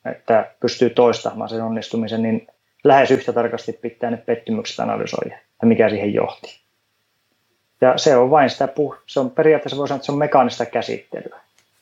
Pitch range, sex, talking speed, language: 115-130 Hz, male, 160 wpm, Finnish